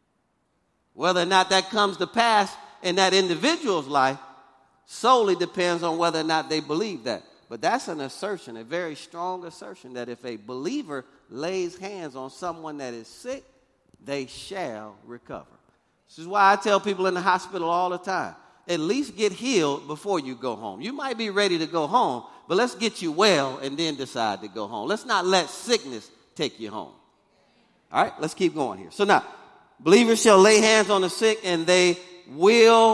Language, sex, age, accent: English, male, 40-59, American